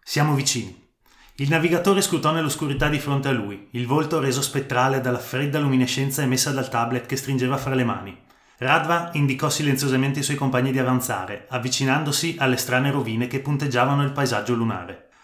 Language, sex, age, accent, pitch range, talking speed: Italian, male, 30-49, native, 125-145 Hz, 165 wpm